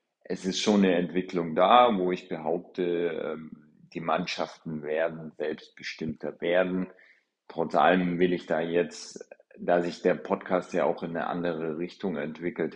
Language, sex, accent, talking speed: German, male, German, 145 wpm